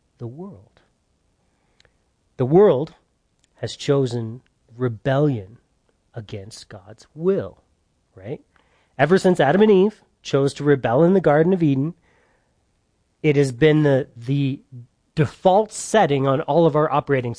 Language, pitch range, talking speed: English, 115-155 Hz, 125 wpm